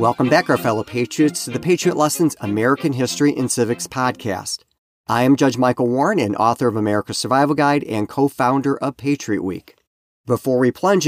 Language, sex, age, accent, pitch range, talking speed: English, male, 40-59, American, 115-150 Hz, 180 wpm